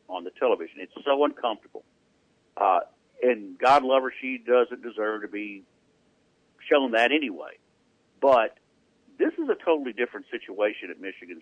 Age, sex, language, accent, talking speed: 60-79, male, English, American, 145 wpm